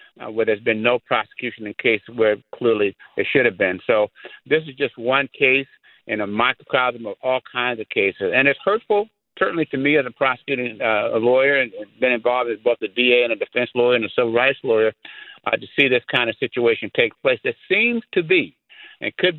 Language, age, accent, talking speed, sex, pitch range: English, 50-69, American, 225 wpm, male, 115-150 Hz